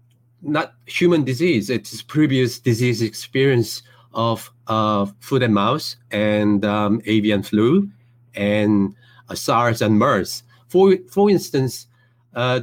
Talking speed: 120 wpm